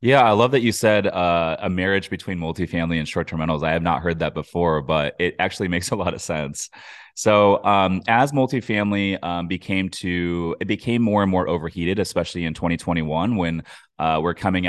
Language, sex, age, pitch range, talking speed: English, male, 20-39, 85-95 Hz, 195 wpm